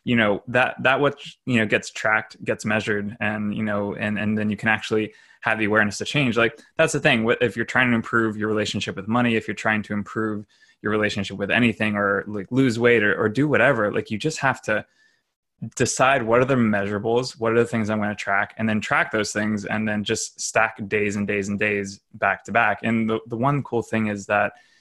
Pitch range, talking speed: 105-125 Hz, 235 wpm